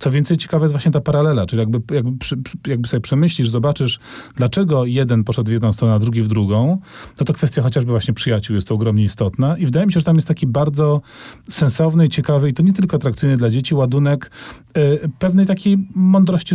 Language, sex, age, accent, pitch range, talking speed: Polish, male, 40-59, native, 115-155 Hz, 210 wpm